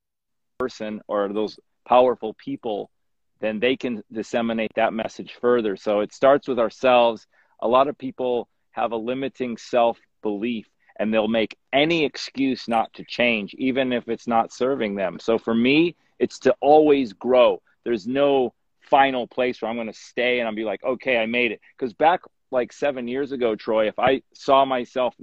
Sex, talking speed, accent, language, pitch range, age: male, 175 wpm, American, English, 115-135 Hz, 30-49